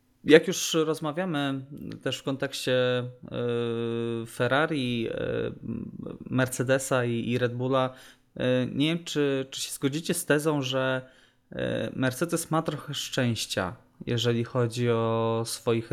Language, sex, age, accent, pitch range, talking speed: Polish, male, 20-39, native, 115-130 Hz, 105 wpm